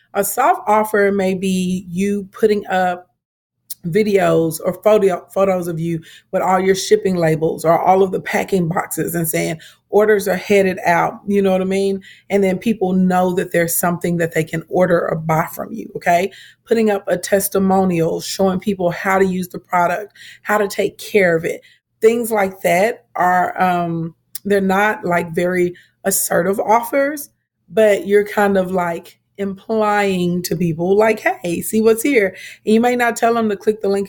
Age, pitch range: 40-59, 180-210 Hz